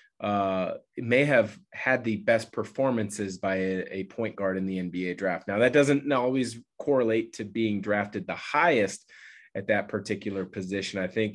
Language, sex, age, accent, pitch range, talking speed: English, male, 30-49, American, 95-110 Hz, 170 wpm